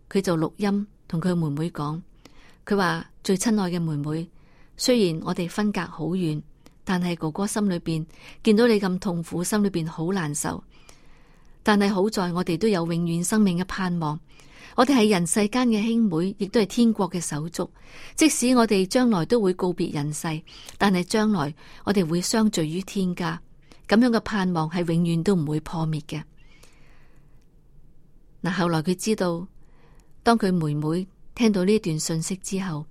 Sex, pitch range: female, 155-205 Hz